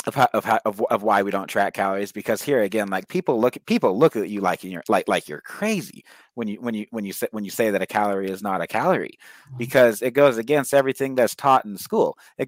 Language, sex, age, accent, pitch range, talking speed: English, male, 30-49, American, 100-140 Hz, 270 wpm